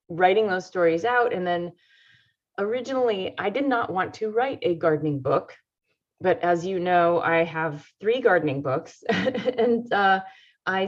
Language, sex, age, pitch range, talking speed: English, female, 30-49, 155-190 Hz, 155 wpm